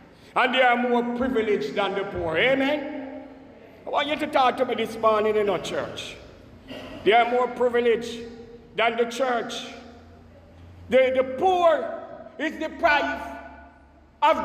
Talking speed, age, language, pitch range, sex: 145 wpm, 60-79, English, 230-330 Hz, male